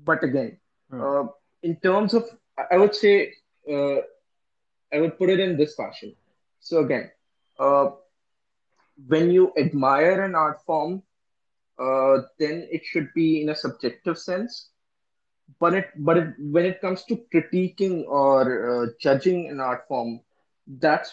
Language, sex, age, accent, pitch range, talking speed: English, male, 20-39, Indian, 135-180 Hz, 145 wpm